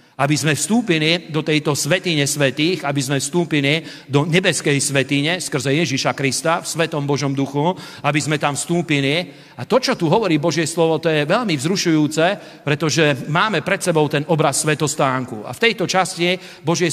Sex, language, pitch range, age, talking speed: male, Slovak, 145-175 Hz, 40-59, 165 wpm